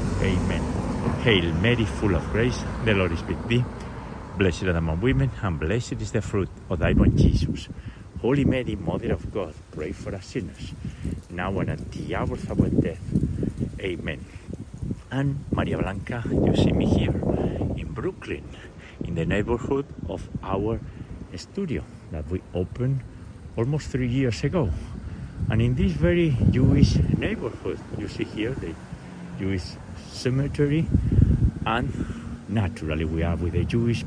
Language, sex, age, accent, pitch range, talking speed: English, male, 60-79, Spanish, 90-115 Hz, 145 wpm